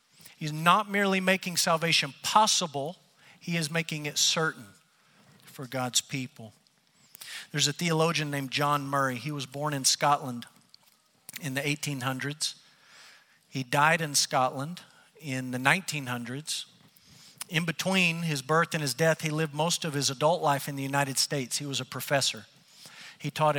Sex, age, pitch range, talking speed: male, 50-69, 140-170 Hz, 150 wpm